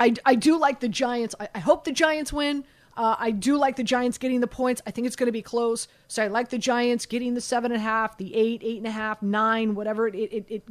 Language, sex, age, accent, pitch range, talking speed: English, female, 30-49, American, 210-245 Hz, 265 wpm